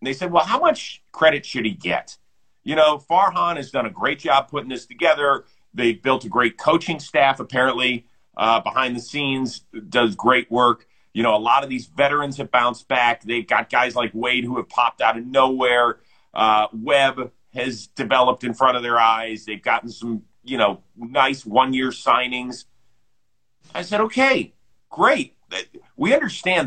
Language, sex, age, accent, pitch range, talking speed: English, male, 40-59, American, 125-180 Hz, 180 wpm